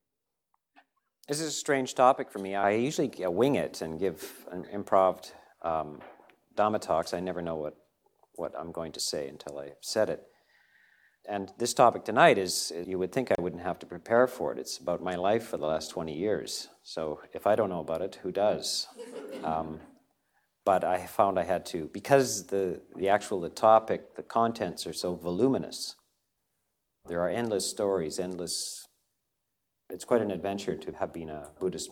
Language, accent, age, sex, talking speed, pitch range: English, American, 50-69, male, 180 wpm, 80-110 Hz